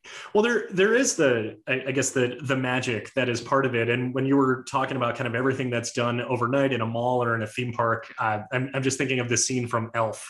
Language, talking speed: English, 260 wpm